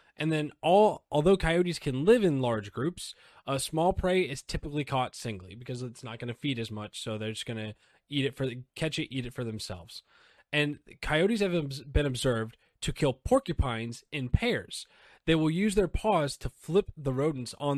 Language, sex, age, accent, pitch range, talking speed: English, male, 20-39, American, 120-160 Hz, 190 wpm